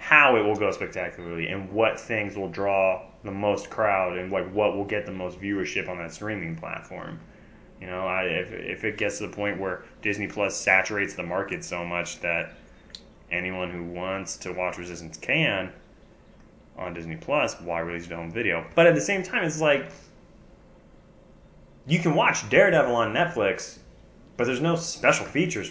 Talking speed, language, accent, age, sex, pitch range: 180 wpm, English, American, 20-39, male, 90-145 Hz